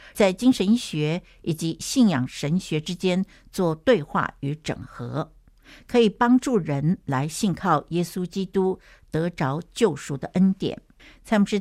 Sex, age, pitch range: female, 60-79, 155-205 Hz